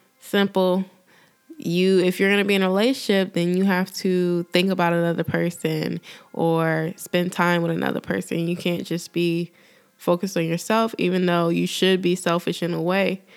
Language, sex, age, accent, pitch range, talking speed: English, female, 20-39, American, 170-190 Hz, 180 wpm